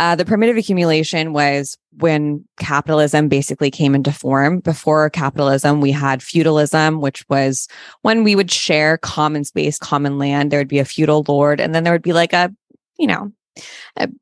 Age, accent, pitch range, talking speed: 20-39, American, 145-180 Hz, 175 wpm